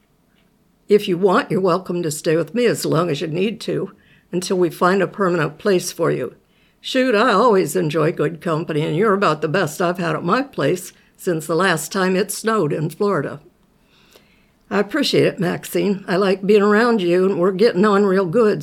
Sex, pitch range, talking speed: female, 170-210 Hz, 200 wpm